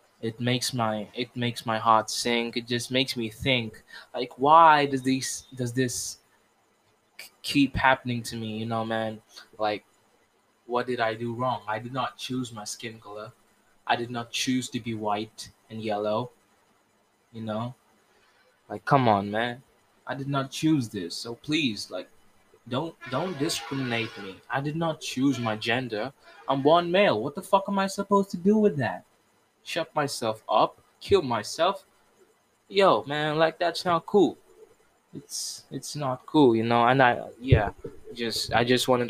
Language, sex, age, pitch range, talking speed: Hindi, male, 20-39, 115-130 Hz, 170 wpm